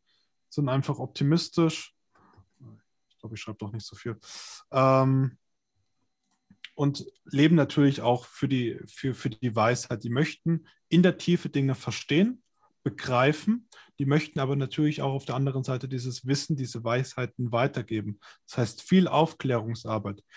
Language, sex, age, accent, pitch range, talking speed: German, male, 20-39, German, 125-155 Hz, 135 wpm